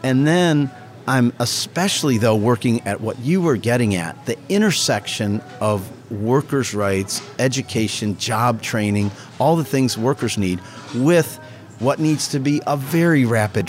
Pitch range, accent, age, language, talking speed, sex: 110-140 Hz, American, 40-59, English, 145 wpm, male